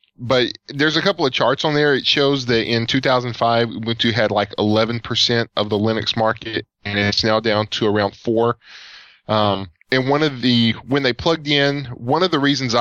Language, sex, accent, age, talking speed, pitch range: English, male, American, 10-29, 190 wpm, 105-120 Hz